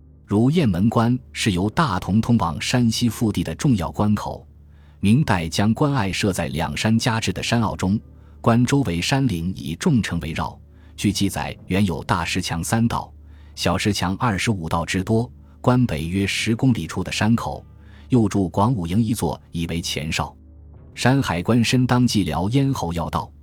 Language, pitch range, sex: Chinese, 85-115 Hz, male